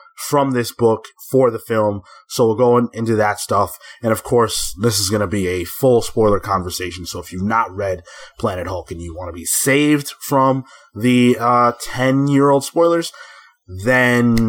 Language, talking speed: English, 185 wpm